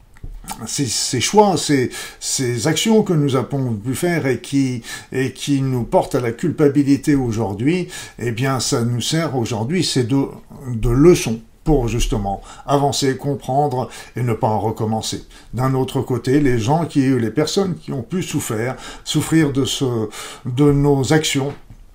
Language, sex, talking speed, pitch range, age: French, male, 160 wpm, 115-145 Hz, 50-69